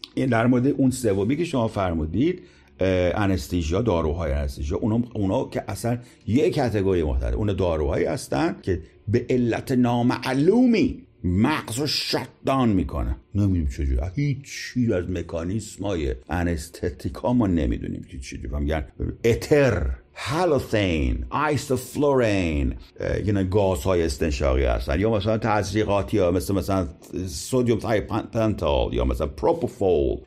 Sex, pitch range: male, 90-125 Hz